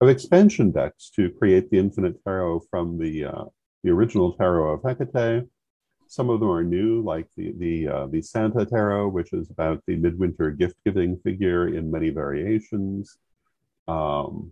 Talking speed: 160 wpm